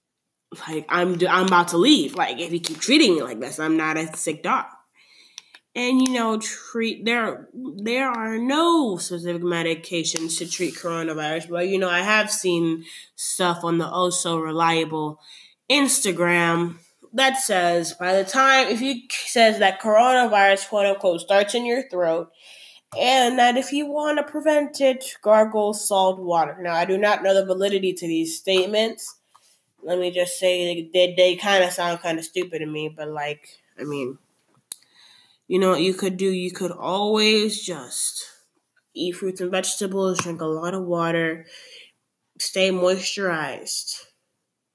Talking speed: 160 wpm